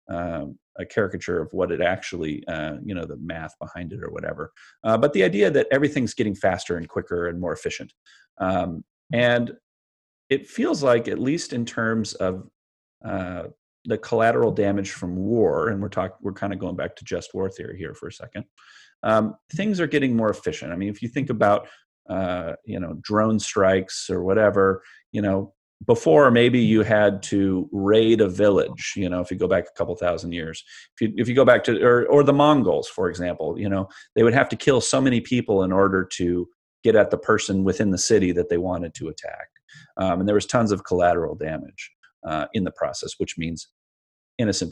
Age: 40-59